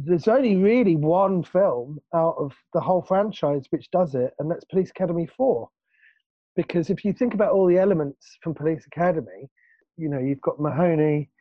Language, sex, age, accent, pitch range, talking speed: English, male, 30-49, British, 135-185 Hz, 180 wpm